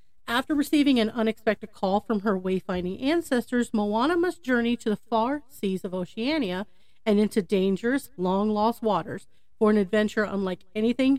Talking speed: 150 wpm